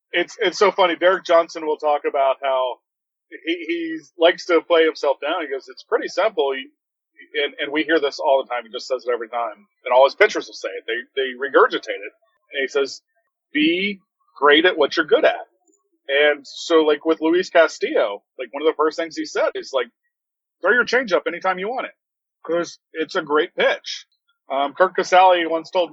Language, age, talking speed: English, 30-49, 215 wpm